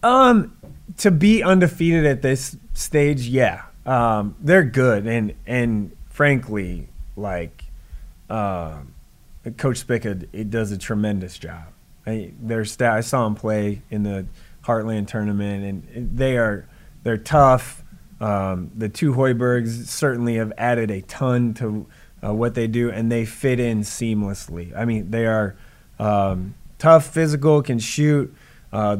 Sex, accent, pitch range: male, American, 100-125 Hz